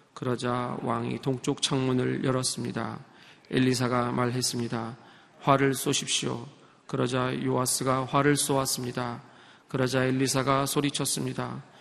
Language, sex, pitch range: Korean, male, 130-145 Hz